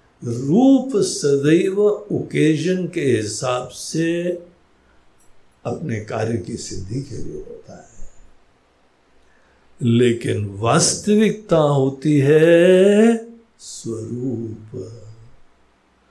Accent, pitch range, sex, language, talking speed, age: native, 110-165 Hz, male, Hindi, 70 wpm, 60-79